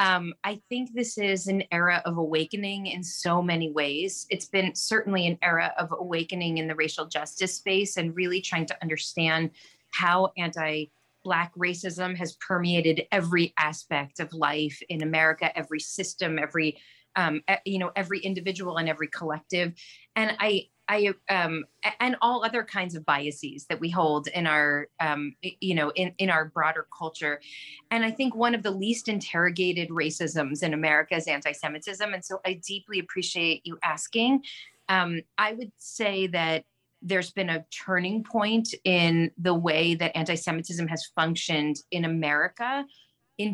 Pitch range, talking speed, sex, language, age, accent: 160-195 Hz, 160 wpm, female, English, 30-49, American